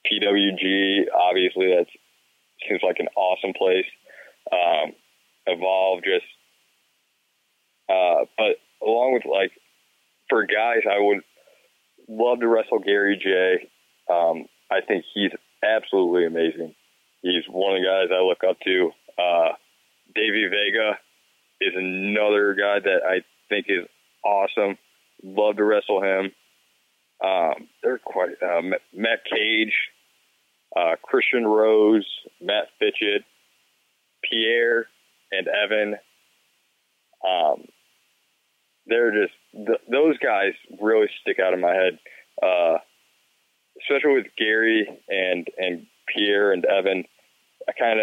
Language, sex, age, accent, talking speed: English, male, 20-39, American, 115 wpm